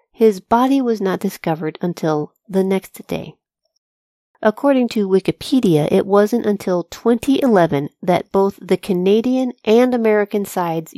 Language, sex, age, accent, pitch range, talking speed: English, female, 40-59, American, 170-225 Hz, 125 wpm